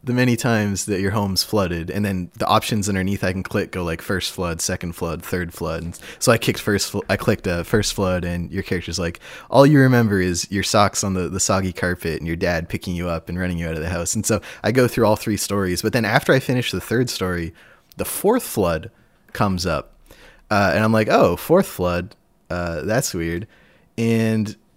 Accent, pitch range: American, 90-115 Hz